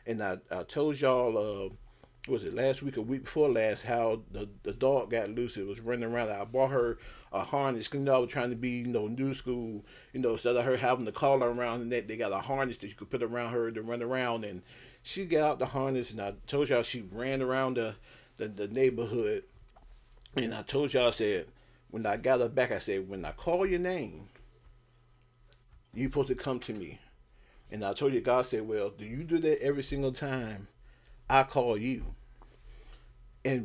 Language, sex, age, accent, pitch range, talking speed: English, male, 40-59, American, 115-140 Hz, 220 wpm